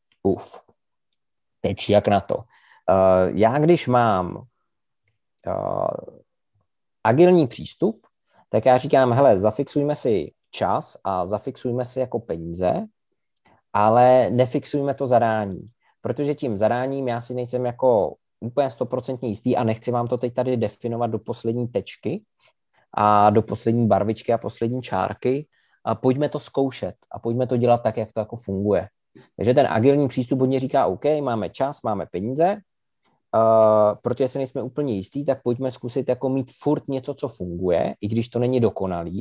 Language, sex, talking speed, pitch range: Czech, male, 150 wpm, 105-130 Hz